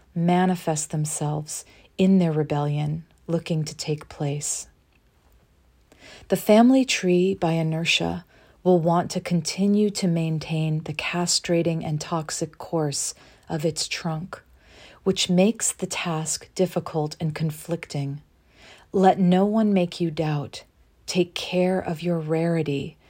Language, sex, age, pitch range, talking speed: English, female, 40-59, 150-175 Hz, 120 wpm